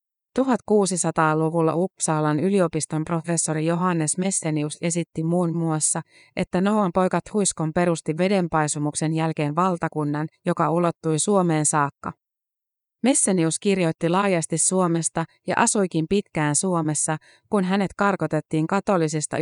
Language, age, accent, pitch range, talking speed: Finnish, 30-49, native, 155-185 Hz, 100 wpm